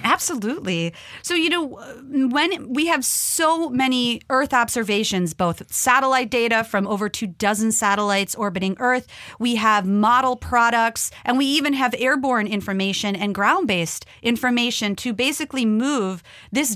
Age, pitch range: 30-49, 200-255 Hz